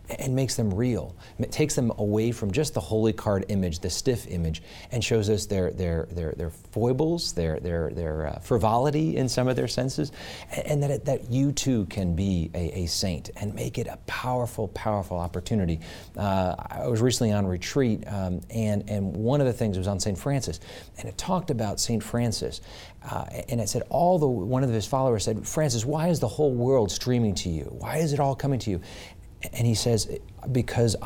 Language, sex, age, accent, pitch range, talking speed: English, male, 40-59, American, 90-120 Hz, 210 wpm